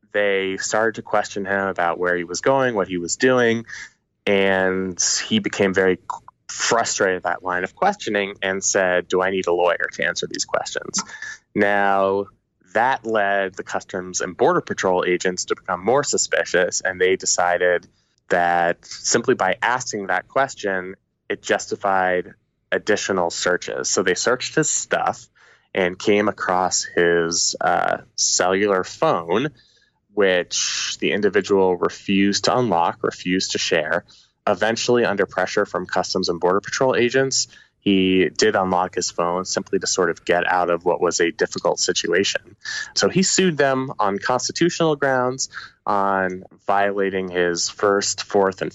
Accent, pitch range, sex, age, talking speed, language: American, 95-130 Hz, male, 20-39, 150 wpm, English